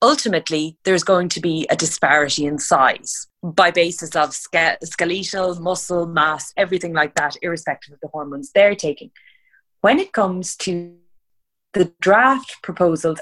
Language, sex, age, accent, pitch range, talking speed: English, female, 30-49, Irish, 165-200 Hz, 140 wpm